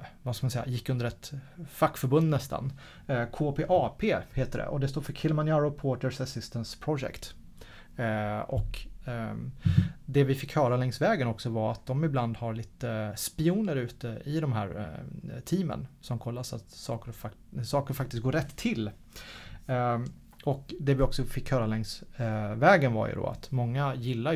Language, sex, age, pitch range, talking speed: Swedish, male, 30-49, 115-145 Hz, 165 wpm